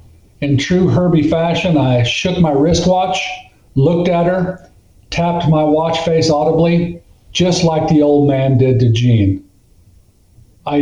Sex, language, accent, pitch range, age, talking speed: male, English, American, 125-165 Hz, 50-69, 140 wpm